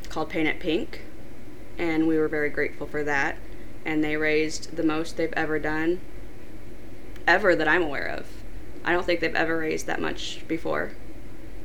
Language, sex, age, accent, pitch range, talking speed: English, female, 20-39, American, 150-165 Hz, 170 wpm